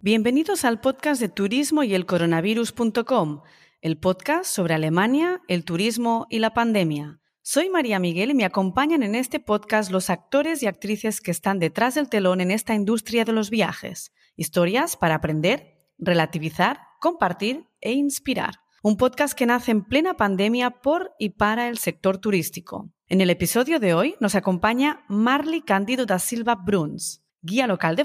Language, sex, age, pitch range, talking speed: Spanish, female, 30-49, 175-260 Hz, 160 wpm